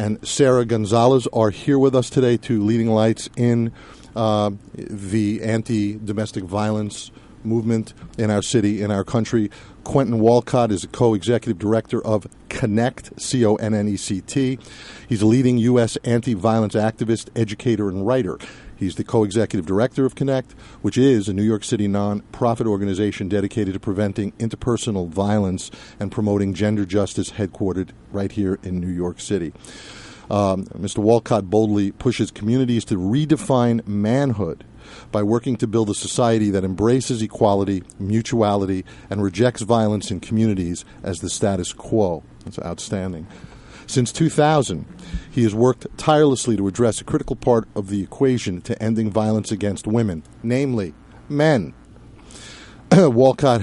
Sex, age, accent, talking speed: male, 50-69, American, 140 wpm